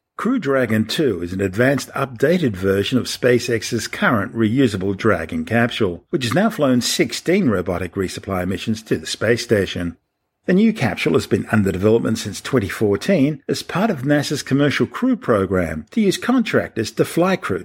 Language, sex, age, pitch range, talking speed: English, male, 50-69, 100-135 Hz, 165 wpm